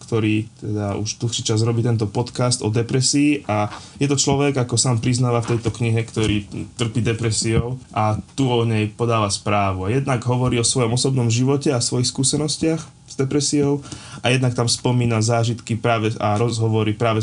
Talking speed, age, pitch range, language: 170 wpm, 20-39, 110-125 Hz, Slovak